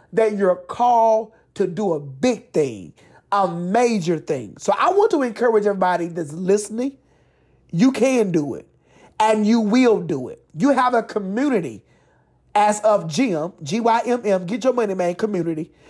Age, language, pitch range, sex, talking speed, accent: 30-49, English, 195-265 Hz, male, 155 wpm, American